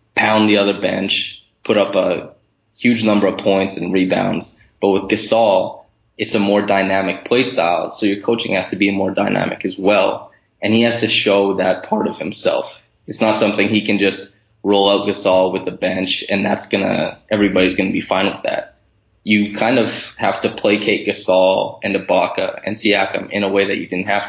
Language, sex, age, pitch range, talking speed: English, male, 20-39, 95-105 Hz, 200 wpm